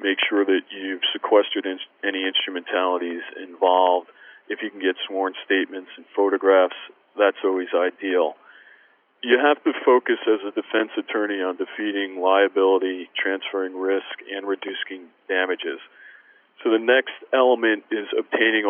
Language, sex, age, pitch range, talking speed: English, male, 40-59, 95-125 Hz, 130 wpm